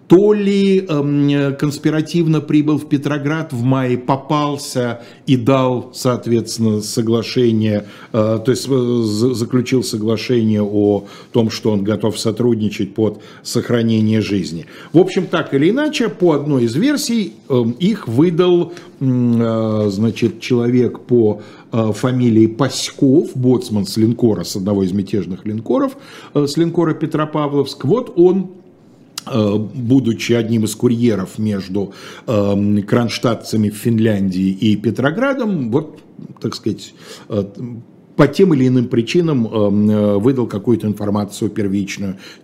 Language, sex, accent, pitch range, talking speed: Russian, male, native, 110-150 Hz, 110 wpm